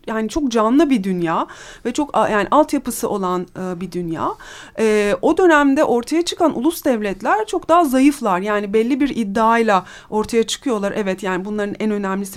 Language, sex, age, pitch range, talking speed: Turkish, female, 40-59, 200-275 Hz, 165 wpm